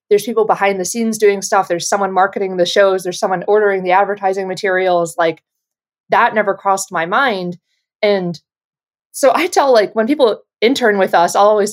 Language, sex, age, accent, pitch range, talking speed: English, female, 20-39, American, 185-230 Hz, 185 wpm